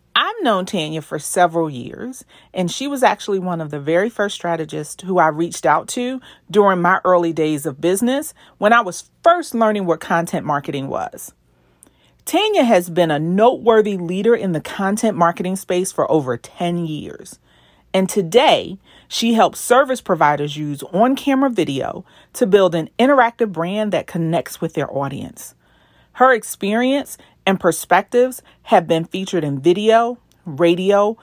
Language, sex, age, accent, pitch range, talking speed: English, female, 40-59, American, 155-225 Hz, 155 wpm